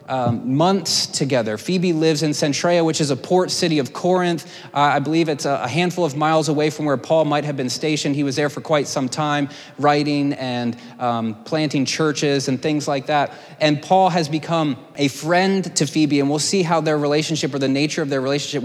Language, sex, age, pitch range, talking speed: English, male, 30-49, 130-155 Hz, 210 wpm